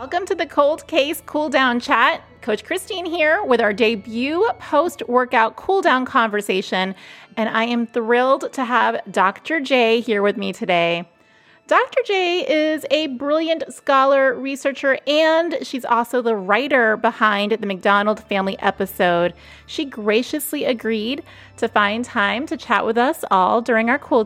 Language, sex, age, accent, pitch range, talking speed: English, female, 30-49, American, 215-295 Hz, 150 wpm